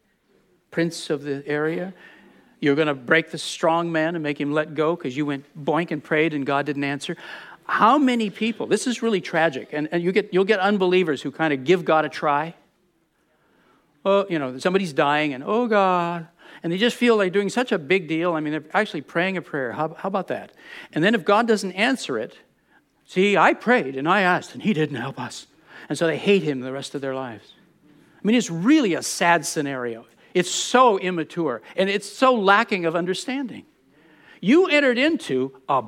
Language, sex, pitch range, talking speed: English, male, 155-230 Hz, 210 wpm